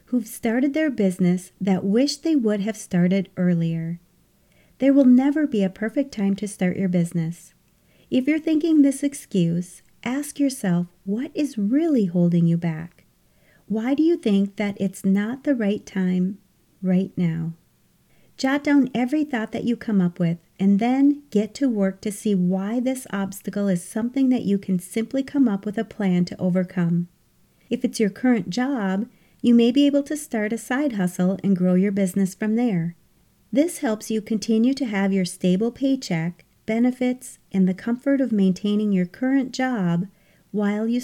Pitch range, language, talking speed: 180-250 Hz, English, 175 wpm